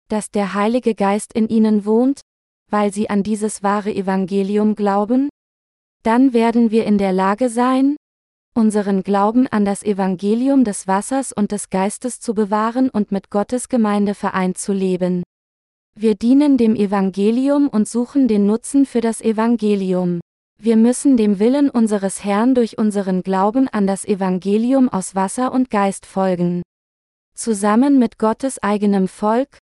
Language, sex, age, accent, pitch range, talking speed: German, female, 20-39, German, 200-240 Hz, 145 wpm